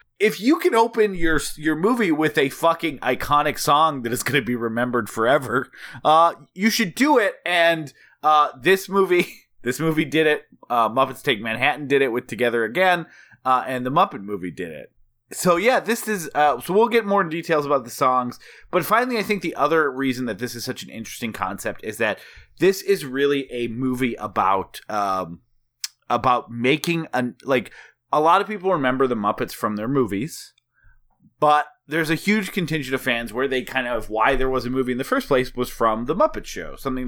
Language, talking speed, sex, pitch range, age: English, 205 wpm, male, 120-170 Hz, 30-49